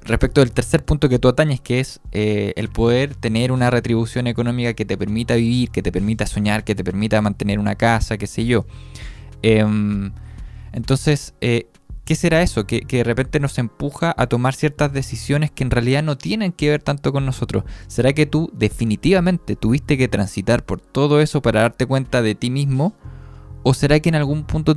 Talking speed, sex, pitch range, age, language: 195 wpm, male, 110-135 Hz, 20-39, Spanish